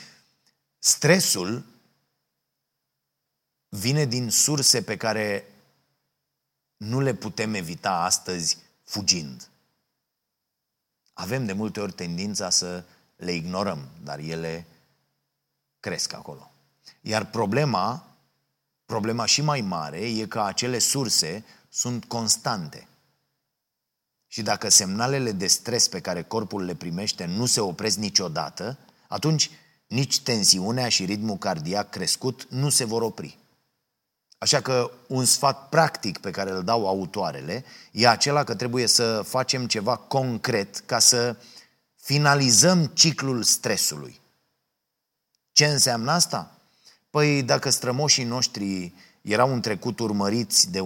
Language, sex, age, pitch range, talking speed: Romanian, male, 30-49, 100-130 Hz, 115 wpm